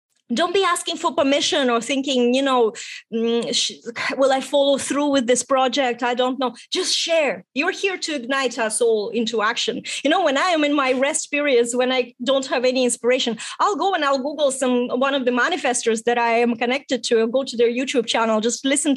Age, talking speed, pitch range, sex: 20-39, 210 wpm, 240-295 Hz, female